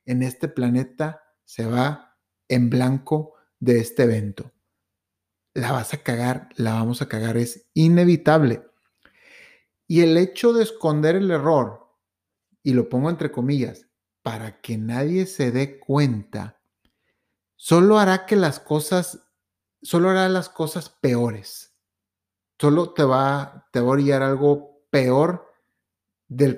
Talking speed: 130 wpm